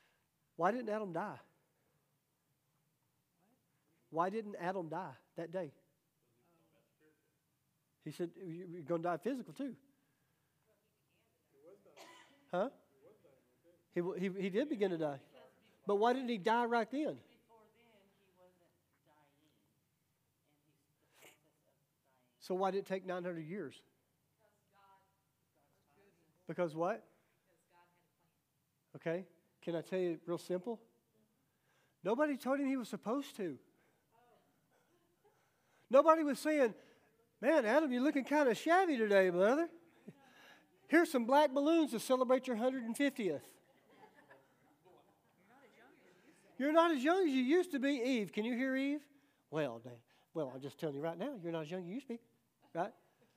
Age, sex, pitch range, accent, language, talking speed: 40-59, male, 160-265 Hz, American, English, 125 wpm